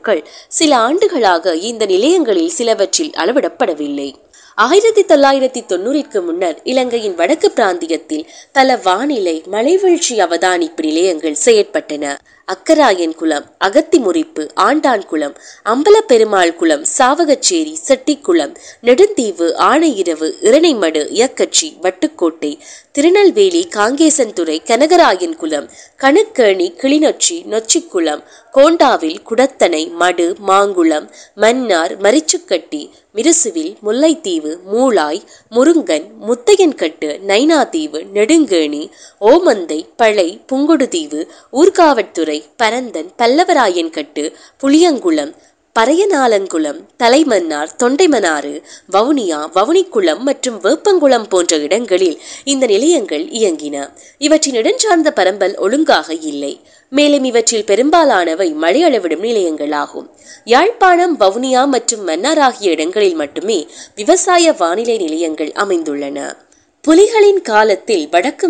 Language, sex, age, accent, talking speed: Tamil, female, 20-39, native, 90 wpm